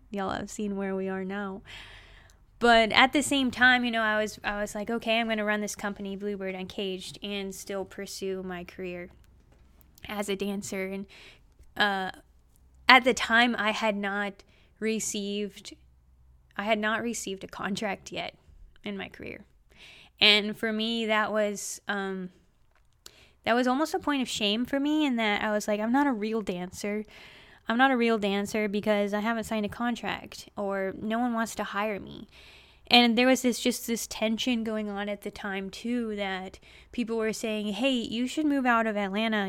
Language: English